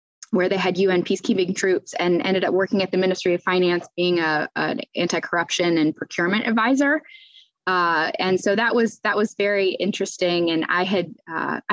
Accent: American